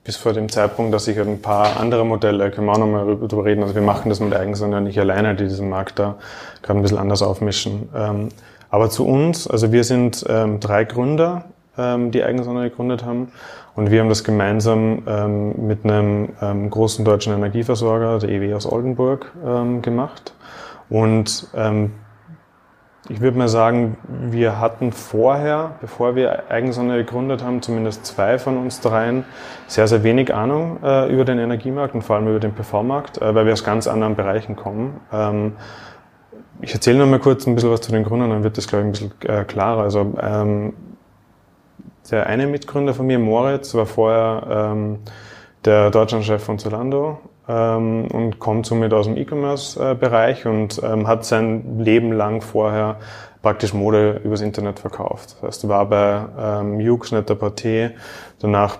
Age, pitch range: 30-49, 105-120 Hz